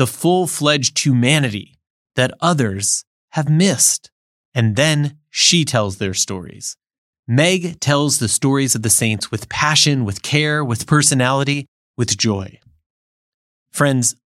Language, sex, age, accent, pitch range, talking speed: English, male, 30-49, American, 115-155 Hz, 120 wpm